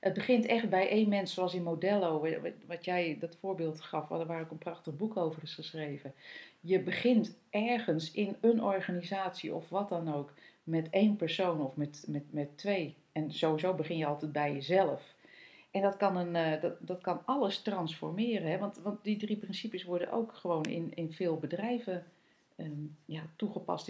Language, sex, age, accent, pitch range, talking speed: Dutch, female, 40-59, Dutch, 160-205 Hz, 180 wpm